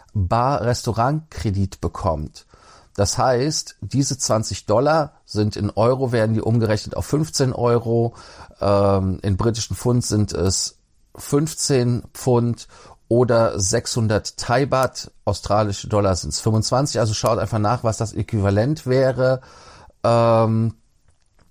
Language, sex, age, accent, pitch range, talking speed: German, male, 40-59, German, 100-120 Hz, 120 wpm